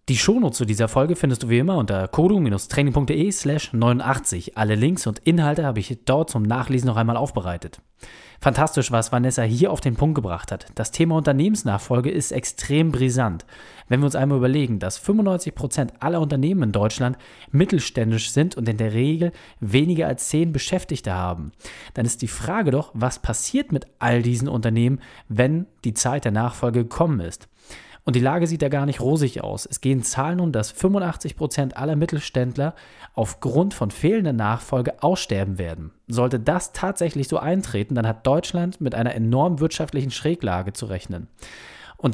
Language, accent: German, German